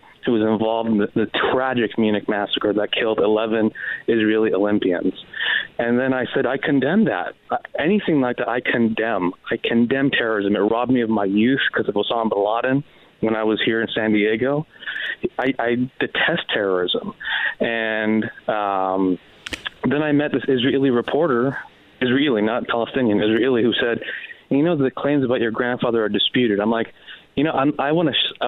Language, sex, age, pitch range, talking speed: English, male, 30-49, 110-125 Hz, 170 wpm